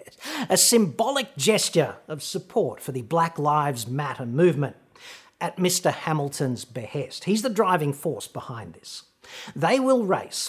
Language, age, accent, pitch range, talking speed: English, 40-59, Australian, 155-220 Hz, 135 wpm